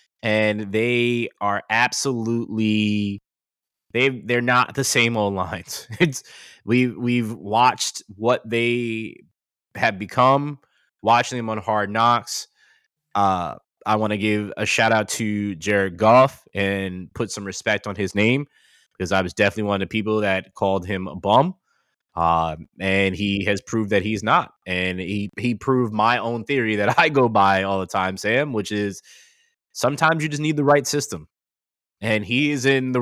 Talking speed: 170 wpm